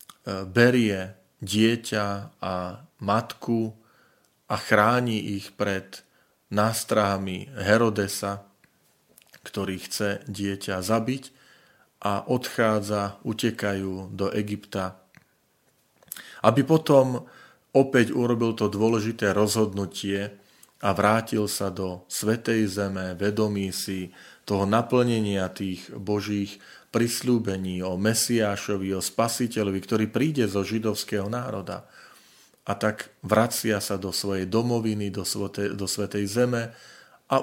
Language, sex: Slovak, male